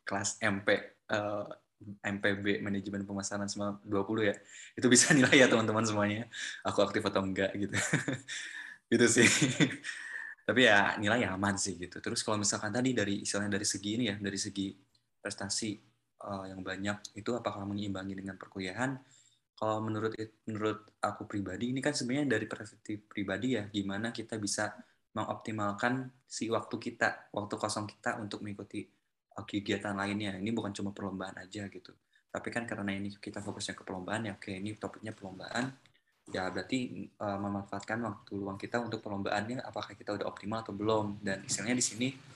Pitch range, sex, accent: 100-110 Hz, male, native